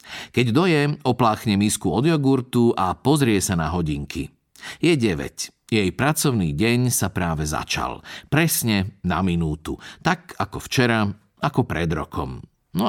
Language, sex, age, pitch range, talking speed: Slovak, male, 50-69, 95-135 Hz, 135 wpm